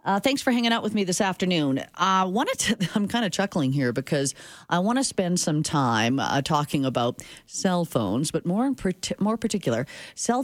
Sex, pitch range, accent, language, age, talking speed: female, 135-190 Hz, American, English, 40-59, 200 wpm